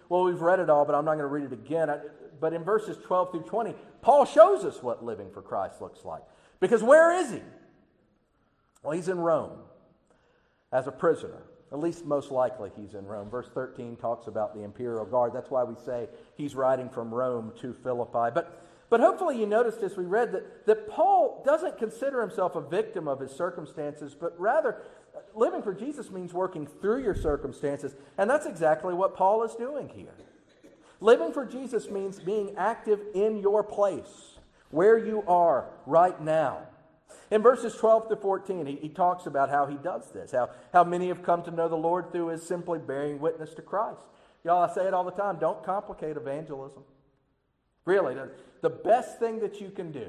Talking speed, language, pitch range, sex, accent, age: 195 wpm, English, 145-210 Hz, male, American, 50-69